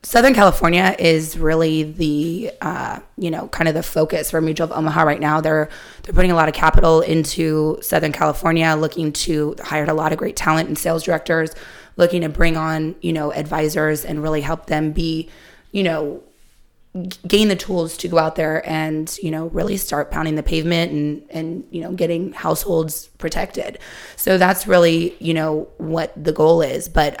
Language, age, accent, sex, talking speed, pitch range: English, 20-39, American, female, 190 wpm, 155-170 Hz